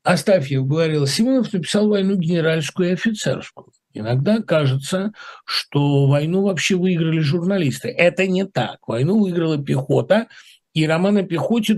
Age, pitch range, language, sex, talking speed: 60-79, 125-170 Hz, Russian, male, 125 wpm